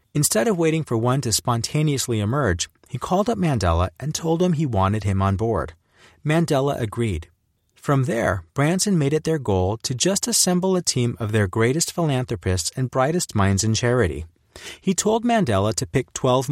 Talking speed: 180 wpm